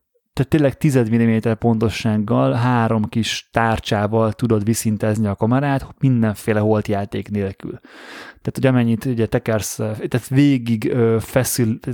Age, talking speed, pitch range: 20-39, 110 wpm, 110-130 Hz